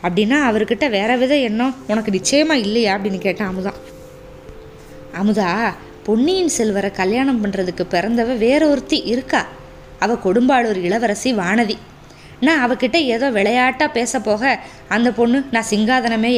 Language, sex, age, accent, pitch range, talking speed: Tamil, female, 20-39, native, 190-255 Hz, 115 wpm